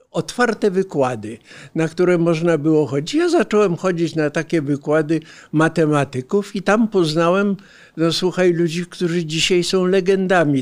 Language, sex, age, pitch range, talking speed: Polish, male, 60-79, 145-180 Hz, 135 wpm